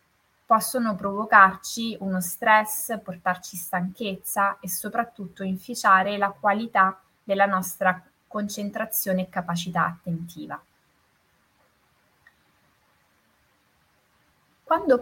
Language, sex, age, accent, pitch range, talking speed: Italian, female, 20-39, native, 175-215 Hz, 70 wpm